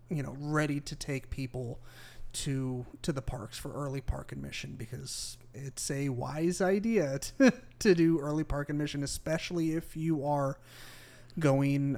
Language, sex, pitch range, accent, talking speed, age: English, male, 125-155 Hz, American, 150 wpm, 30-49